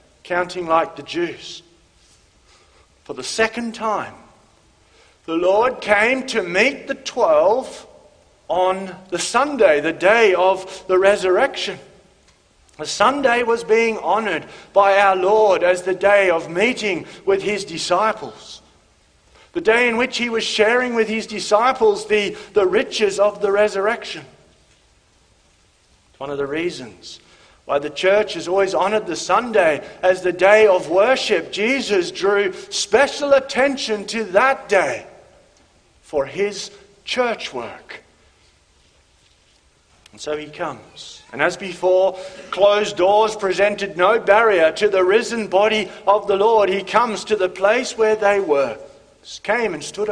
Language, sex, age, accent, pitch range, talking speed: English, male, 50-69, Australian, 165-220 Hz, 135 wpm